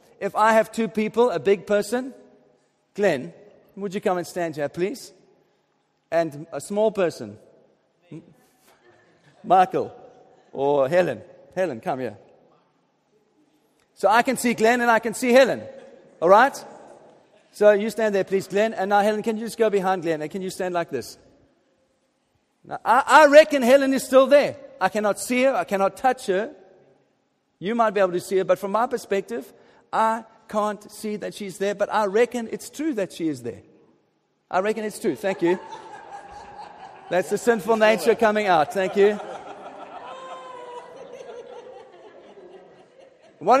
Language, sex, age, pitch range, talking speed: English, male, 40-59, 200-270 Hz, 160 wpm